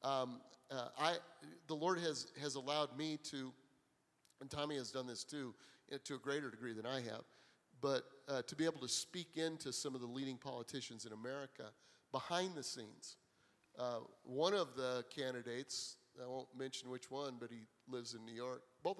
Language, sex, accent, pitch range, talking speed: English, male, American, 125-140 Hz, 185 wpm